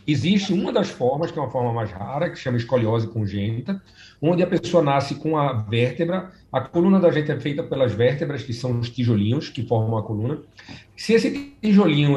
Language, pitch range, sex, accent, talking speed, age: Portuguese, 125-175 Hz, male, Brazilian, 195 wpm, 50-69